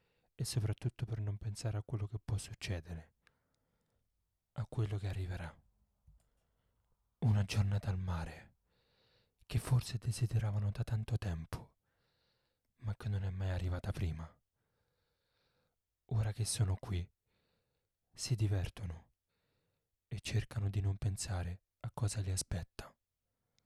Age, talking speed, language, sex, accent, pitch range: 30-49, 115 wpm, Italian, male, native, 95-110 Hz